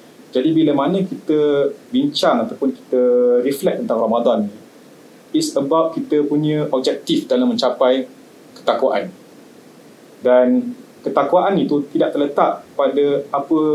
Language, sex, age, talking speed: Malay, male, 30-49, 110 wpm